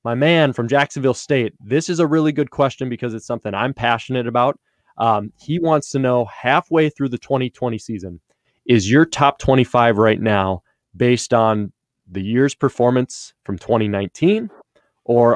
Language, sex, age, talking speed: English, male, 20-39, 160 wpm